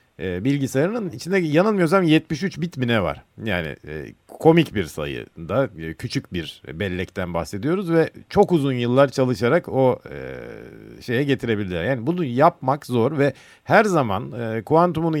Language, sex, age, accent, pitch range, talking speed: Turkish, male, 50-69, native, 105-140 Hz, 135 wpm